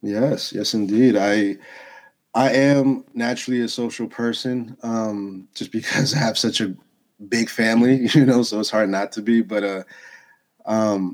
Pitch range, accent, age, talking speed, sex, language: 105-130 Hz, American, 30-49, 160 wpm, male, English